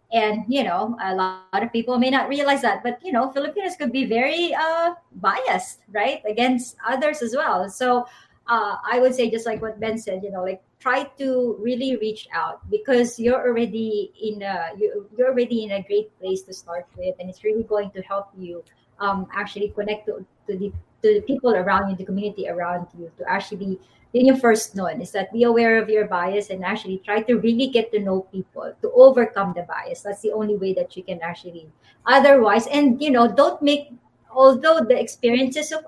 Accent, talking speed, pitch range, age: Filipino, 205 wpm, 195-260 Hz, 30-49